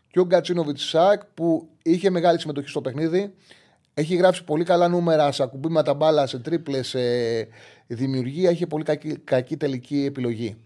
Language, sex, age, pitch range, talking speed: Greek, male, 30-49, 115-150 Hz, 160 wpm